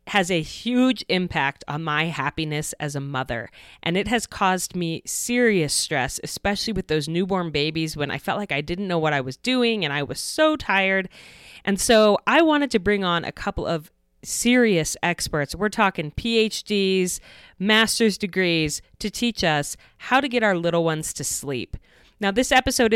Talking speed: 180 wpm